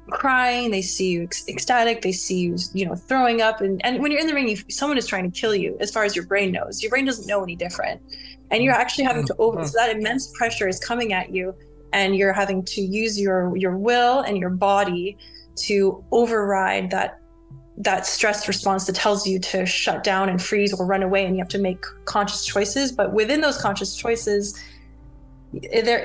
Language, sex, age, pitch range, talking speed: English, female, 20-39, 185-215 Hz, 215 wpm